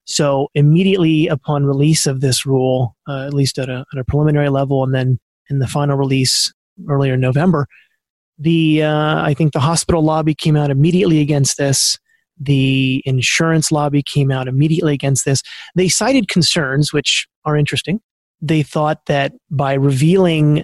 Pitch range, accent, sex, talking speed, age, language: 135-155 Hz, American, male, 155 wpm, 30-49, English